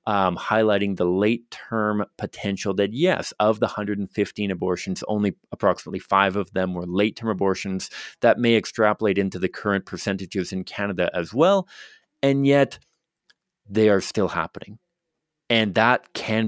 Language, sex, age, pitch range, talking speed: English, male, 30-49, 95-115 Hz, 140 wpm